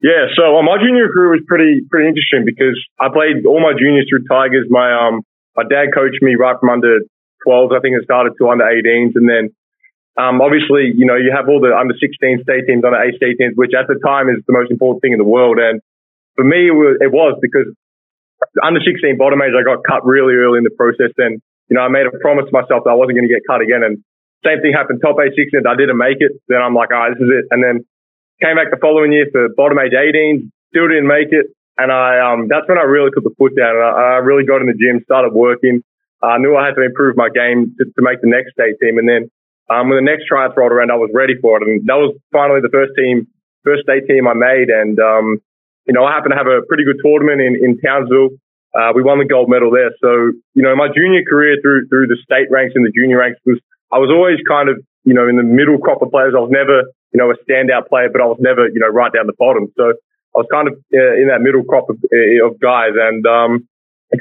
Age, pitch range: 20-39, 120-145 Hz